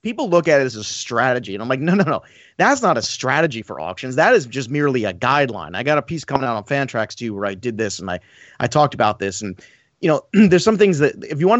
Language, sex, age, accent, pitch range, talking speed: English, male, 30-49, American, 125-170 Hz, 280 wpm